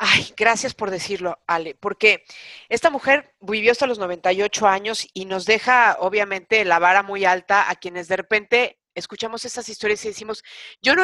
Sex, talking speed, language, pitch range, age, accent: female, 175 wpm, Spanish, 180-230 Hz, 40-59, Mexican